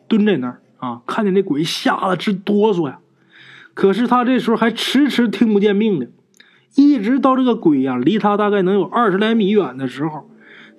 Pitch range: 125-195 Hz